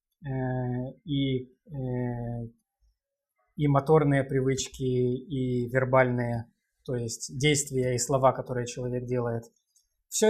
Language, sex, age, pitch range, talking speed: Russian, male, 20-39, 125-150 Hz, 85 wpm